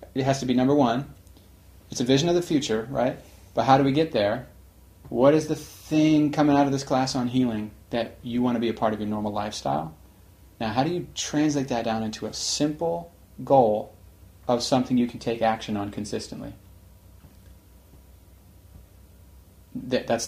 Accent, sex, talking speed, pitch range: American, male, 180 wpm, 95-130 Hz